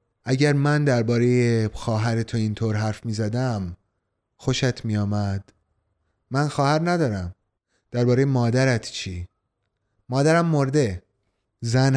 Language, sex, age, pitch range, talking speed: Persian, male, 30-49, 105-140 Hz, 100 wpm